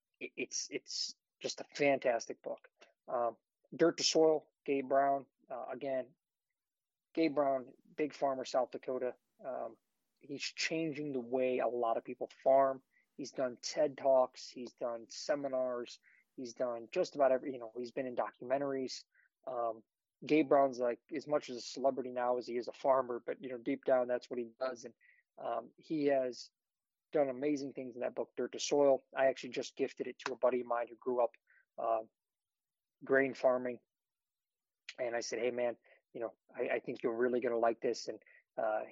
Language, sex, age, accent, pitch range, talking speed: English, male, 20-39, American, 120-135 Hz, 180 wpm